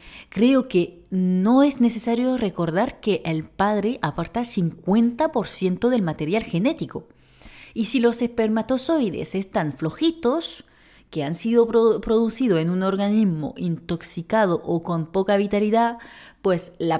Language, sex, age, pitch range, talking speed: Spanish, female, 20-39, 180-245 Hz, 125 wpm